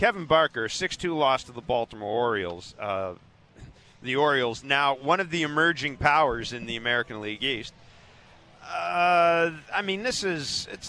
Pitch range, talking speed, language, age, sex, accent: 110-155 Hz, 150 wpm, English, 40-59, male, American